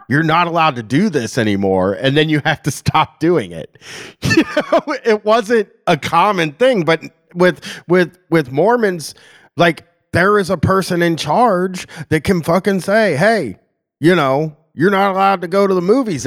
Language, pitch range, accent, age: English, 130-185 Hz, American, 30-49